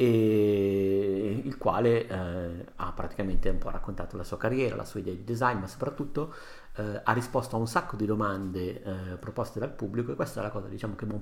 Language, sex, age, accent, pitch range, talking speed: Italian, male, 50-69, native, 100-120 Hz, 220 wpm